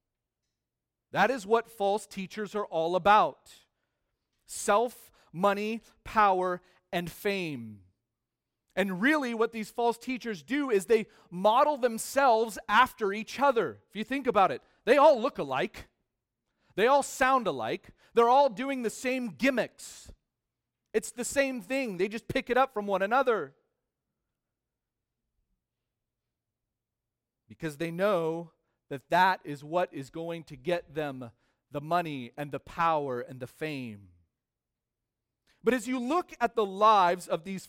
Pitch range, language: 150-230 Hz, English